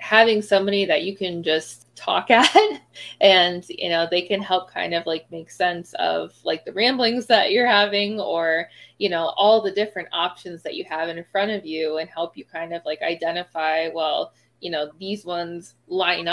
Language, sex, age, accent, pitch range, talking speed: English, female, 20-39, American, 165-210 Hz, 195 wpm